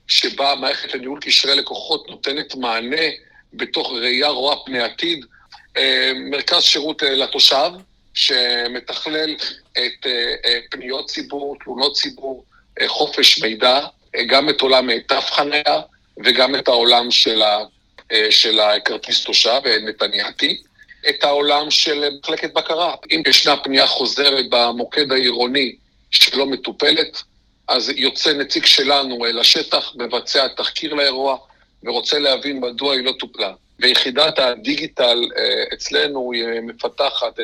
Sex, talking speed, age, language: male, 110 wpm, 50-69, Hebrew